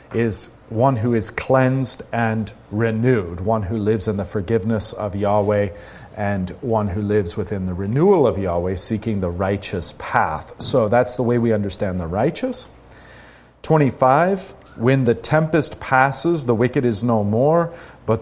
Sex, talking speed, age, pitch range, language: male, 155 wpm, 40-59, 105-130 Hz, English